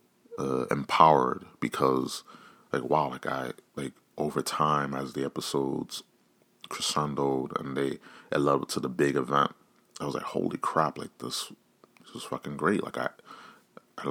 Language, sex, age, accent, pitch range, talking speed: English, male, 30-49, American, 70-80 Hz, 155 wpm